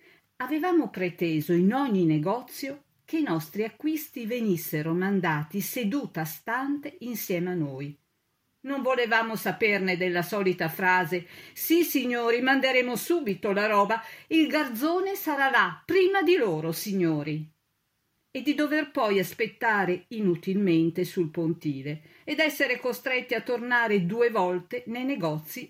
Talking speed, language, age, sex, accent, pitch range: 125 wpm, Italian, 50-69, female, native, 165-255 Hz